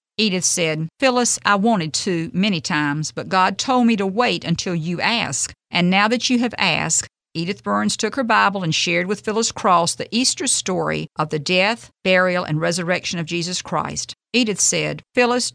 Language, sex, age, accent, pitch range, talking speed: English, female, 50-69, American, 160-220 Hz, 185 wpm